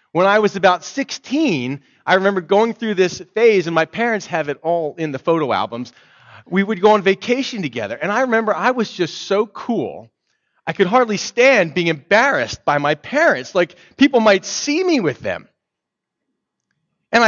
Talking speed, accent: 180 wpm, American